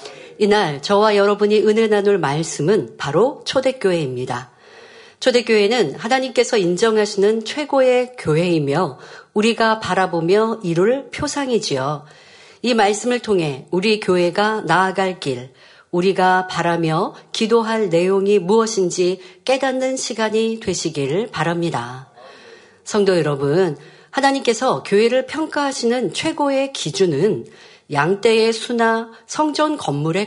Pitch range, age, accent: 180-260 Hz, 50-69, native